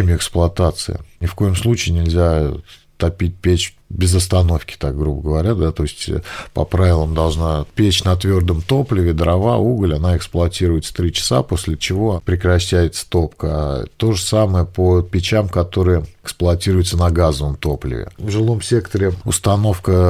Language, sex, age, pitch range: Russian, male, 40-59, 85-100 Hz